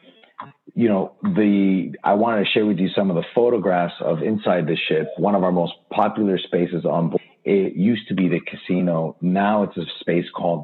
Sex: male